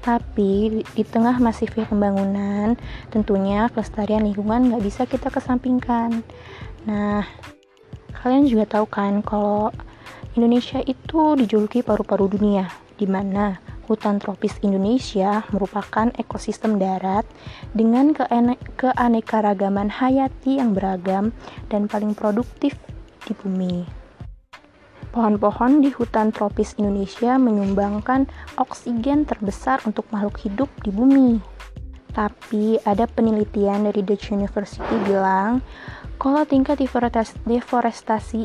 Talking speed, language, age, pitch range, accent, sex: 105 wpm, Indonesian, 20-39, 205-245 Hz, native, female